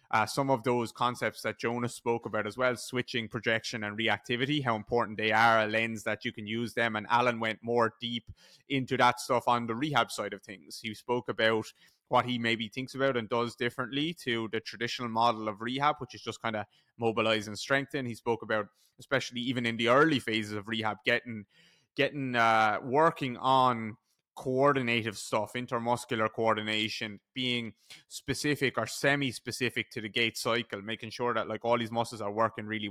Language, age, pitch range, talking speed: English, 20-39, 110-125 Hz, 190 wpm